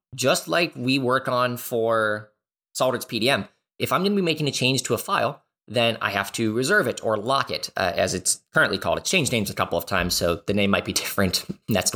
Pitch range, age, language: 105-140 Hz, 20-39, English